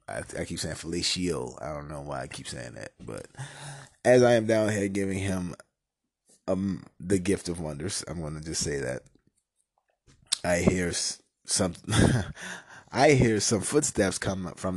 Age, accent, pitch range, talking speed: 20-39, American, 90-115 Hz, 160 wpm